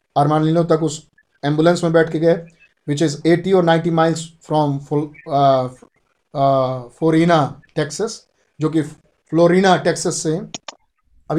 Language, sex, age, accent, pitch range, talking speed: Hindi, male, 50-69, native, 155-185 Hz, 125 wpm